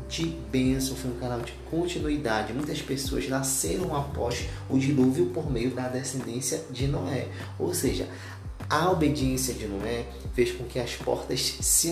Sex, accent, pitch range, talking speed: male, Brazilian, 110-140 Hz, 155 wpm